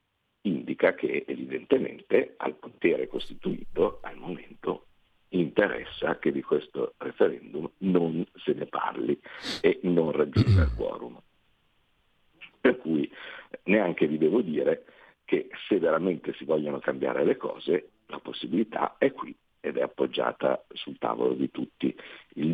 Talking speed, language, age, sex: 130 wpm, Italian, 50-69, male